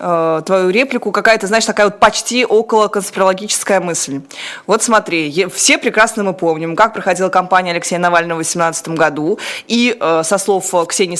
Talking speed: 145 wpm